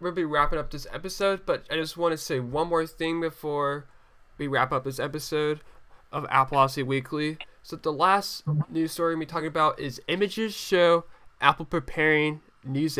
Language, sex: English, male